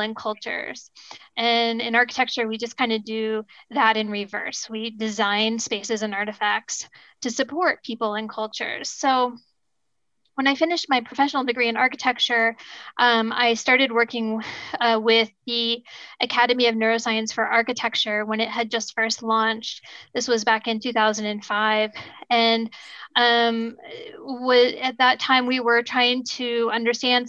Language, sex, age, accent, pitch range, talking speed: English, female, 10-29, American, 225-250 Hz, 145 wpm